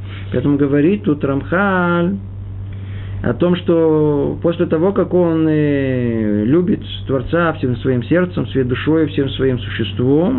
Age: 50-69